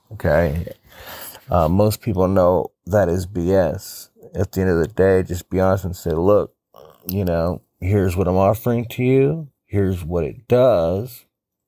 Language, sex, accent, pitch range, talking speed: English, male, American, 85-110 Hz, 165 wpm